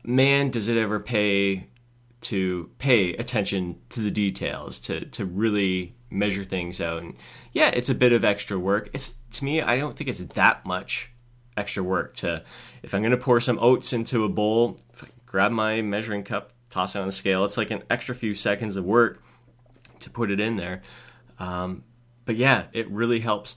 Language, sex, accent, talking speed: English, male, American, 195 wpm